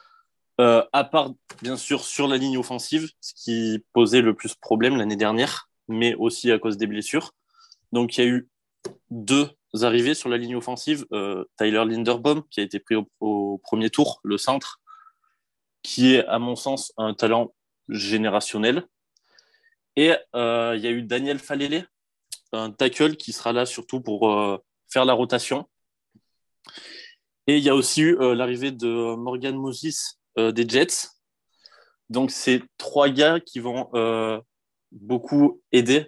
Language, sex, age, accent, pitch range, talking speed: French, male, 20-39, French, 110-140 Hz, 160 wpm